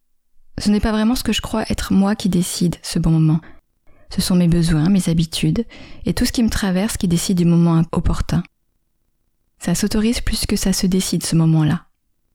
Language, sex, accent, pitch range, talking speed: French, female, French, 160-195 Hz, 200 wpm